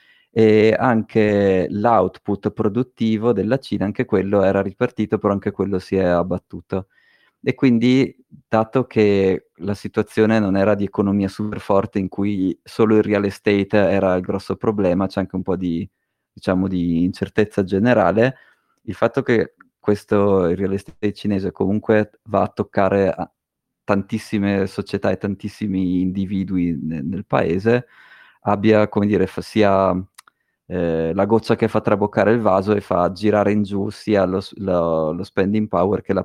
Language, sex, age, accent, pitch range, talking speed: Italian, male, 20-39, native, 95-105 Hz, 155 wpm